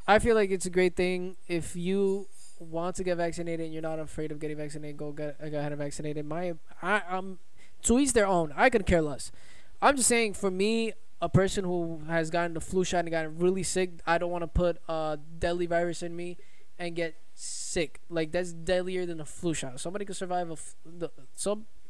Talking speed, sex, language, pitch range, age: 215 wpm, male, English, 160-190 Hz, 20-39